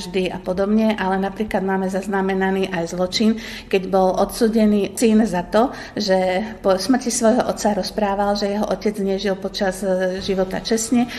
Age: 50-69